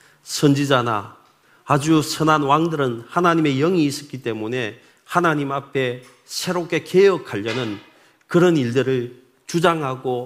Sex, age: male, 40-59